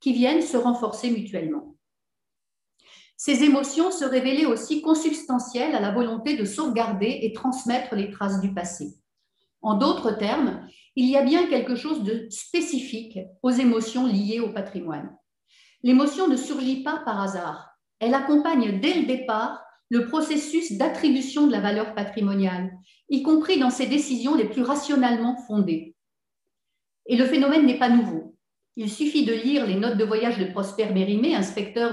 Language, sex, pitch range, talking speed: French, female, 205-275 Hz, 155 wpm